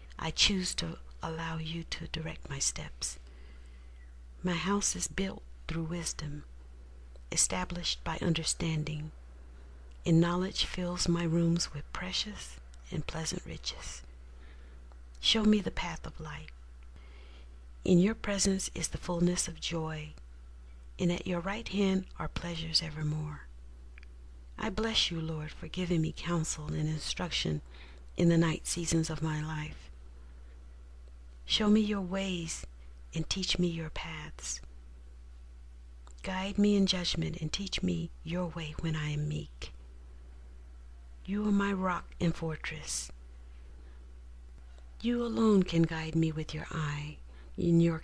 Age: 50-69